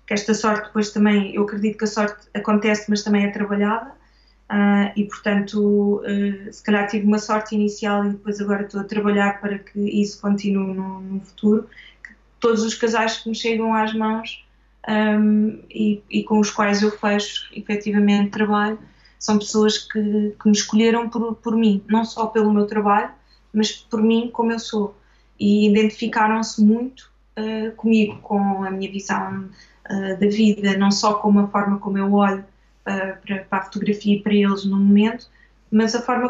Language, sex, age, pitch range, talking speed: Portuguese, female, 20-39, 205-225 Hz, 175 wpm